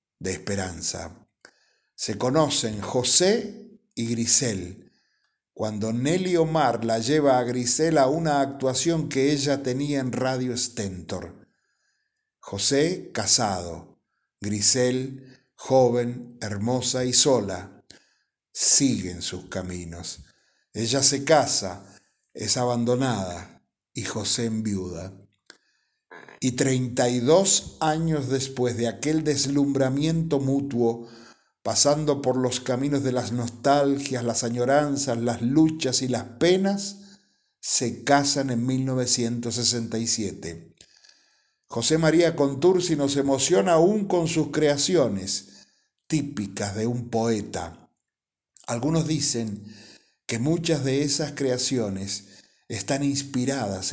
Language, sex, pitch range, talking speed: Spanish, male, 115-145 Hz, 100 wpm